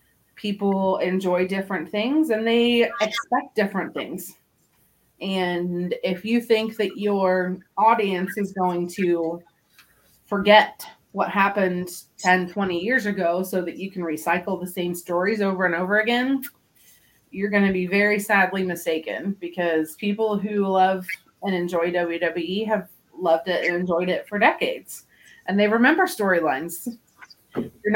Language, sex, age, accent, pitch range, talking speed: English, female, 30-49, American, 175-210 Hz, 140 wpm